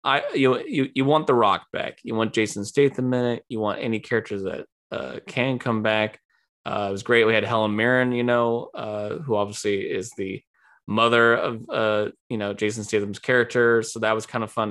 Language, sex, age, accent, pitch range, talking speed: English, male, 20-39, American, 105-130 Hz, 210 wpm